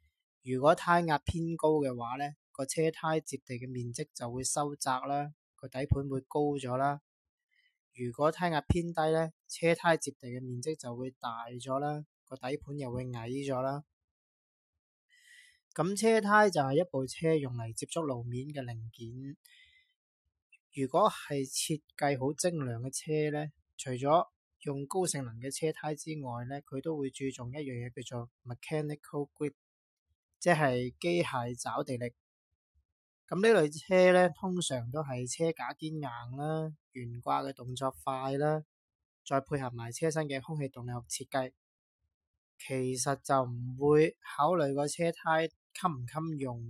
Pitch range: 125-155 Hz